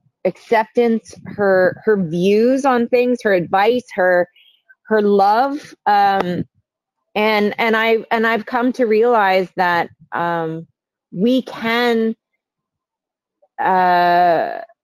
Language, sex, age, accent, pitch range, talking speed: English, female, 30-49, American, 175-220 Hz, 100 wpm